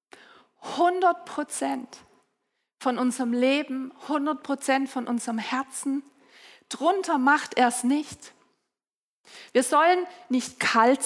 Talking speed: 85 wpm